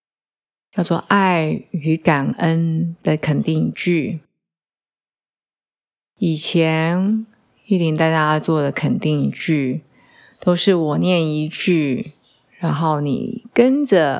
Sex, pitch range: female, 150-180 Hz